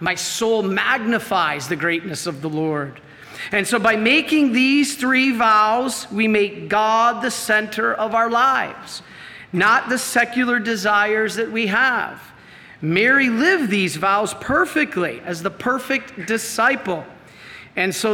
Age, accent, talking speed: 40-59, American, 135 wpm